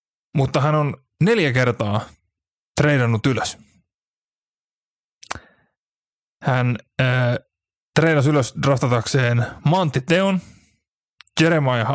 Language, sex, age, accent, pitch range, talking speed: Finnish, male, 30-49, native, 115-150 Hz, 75 wpm